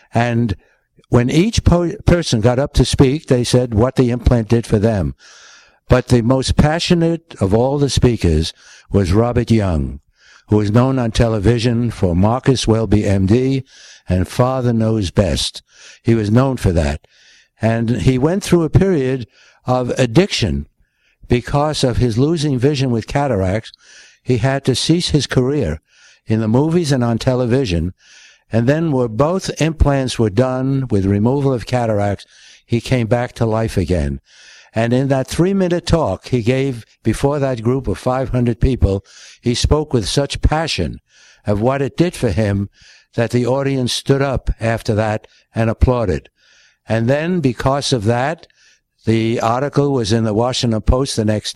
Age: 60-79